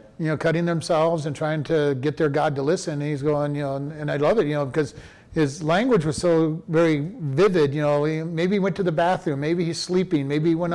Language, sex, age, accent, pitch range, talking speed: English, male, 40-59, American, 145-175 Hz, 255 wpm